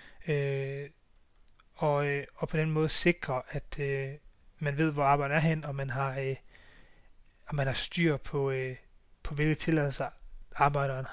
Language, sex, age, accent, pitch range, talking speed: Danish, male, 30-49, native, 140-165 Hz, 155 wpm